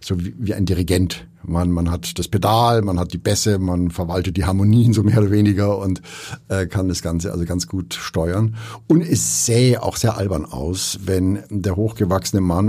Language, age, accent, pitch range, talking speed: German, 60-79, German, 95-115 Hz, 195 wpm